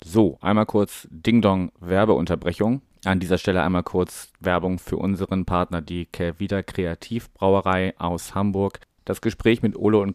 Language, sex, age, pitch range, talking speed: German, male, 30-49, 90-105 Hz, 135 wpm